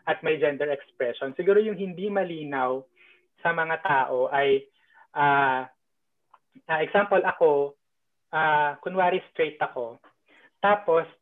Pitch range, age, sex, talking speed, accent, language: 140-190 Hz, 20-39, male, 110 wpm, native, Filipino